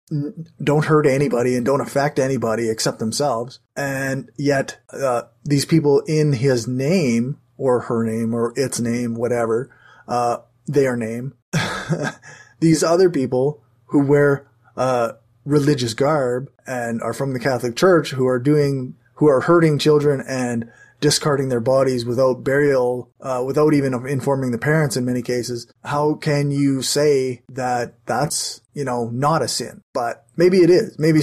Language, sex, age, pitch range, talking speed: English, male, 20-39, 120-150 Hz, 150 wpm